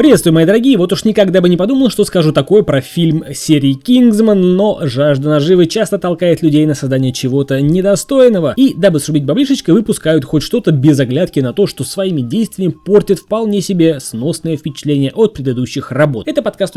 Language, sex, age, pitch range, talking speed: Russian, male, 20-39, 140-210 Hz, 180 wpm